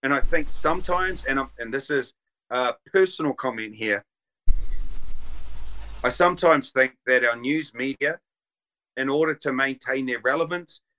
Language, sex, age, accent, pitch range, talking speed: English, male, 40-59, Australian, 130-210 Hz, 140 wpm